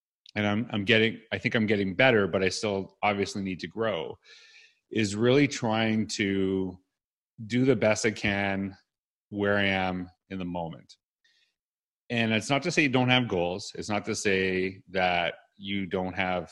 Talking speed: 175 wpm